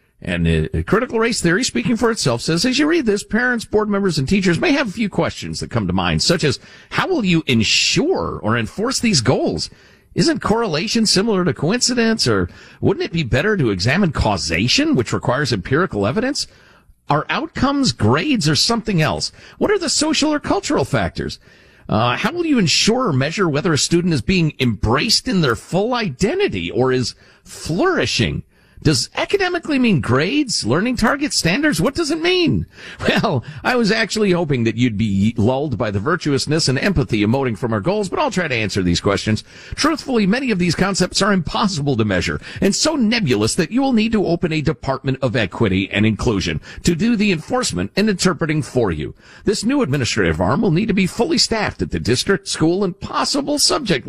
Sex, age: male, 50-69